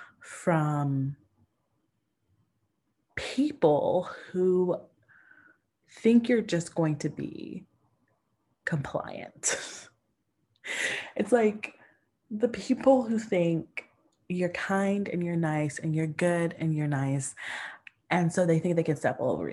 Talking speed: 110 wpm